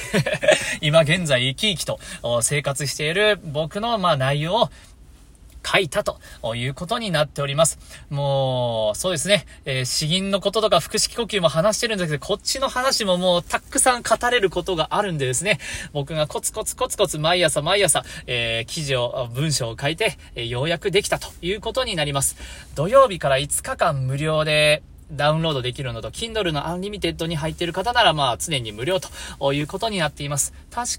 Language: Japanese